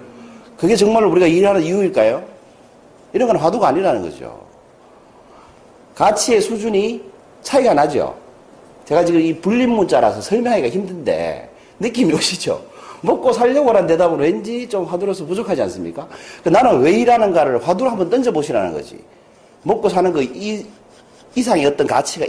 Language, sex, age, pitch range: Korean, male, 40-59, 160-230 Hz